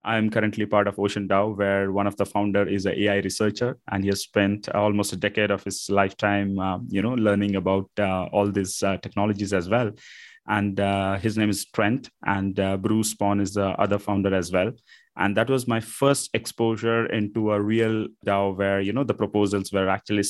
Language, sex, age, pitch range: English, male, 20-39, 100-115 Hz